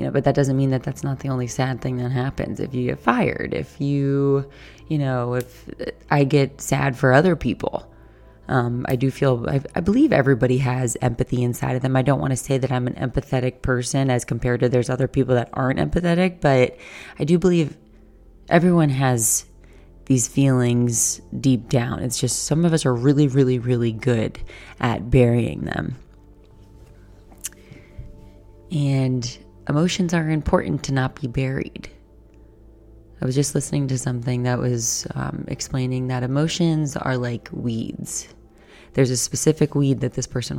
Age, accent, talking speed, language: 20-39, American, 165 wpm, English